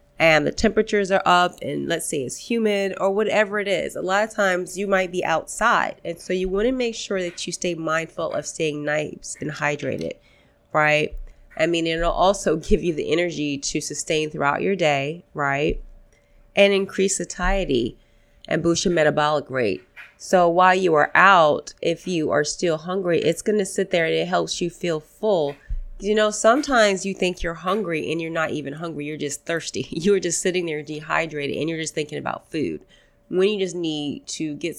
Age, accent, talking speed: 30-49, American, 195 wpm